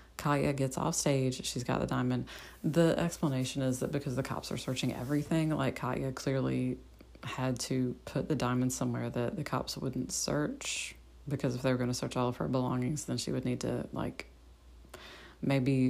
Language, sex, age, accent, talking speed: English, female, 30-49, American, 190 wpm